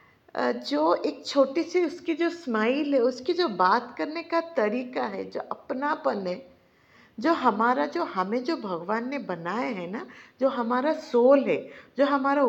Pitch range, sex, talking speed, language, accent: 230-330 Hz, female, 165 wpm, Hindi, native